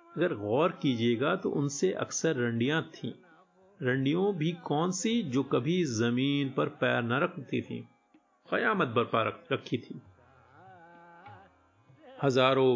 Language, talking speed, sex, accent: Hindi, 115 wpm, male, native